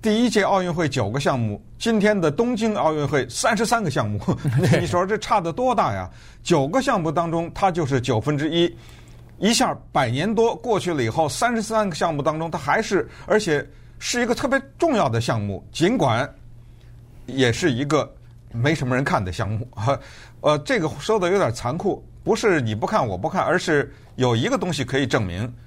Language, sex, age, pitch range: Chinese, male, 50-69, 115-165 Hz